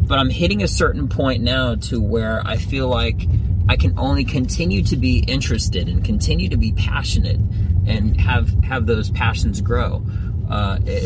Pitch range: 95-105 Hz